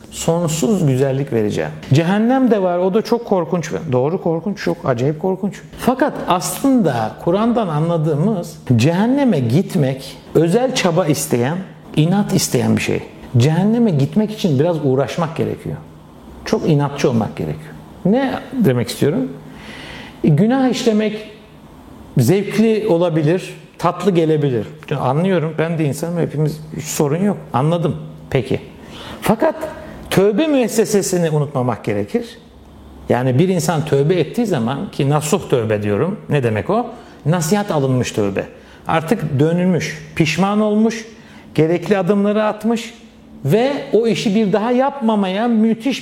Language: Turkish